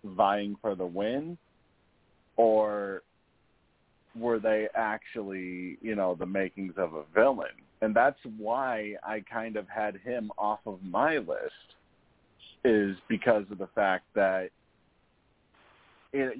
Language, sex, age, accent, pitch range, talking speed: English, male, 30-49, American, 95-120 Hz, 125 wpm